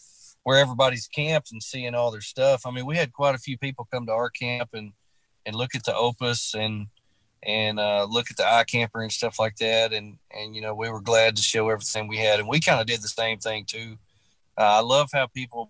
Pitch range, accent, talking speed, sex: 110-130 Hz, American, 245 wpm, male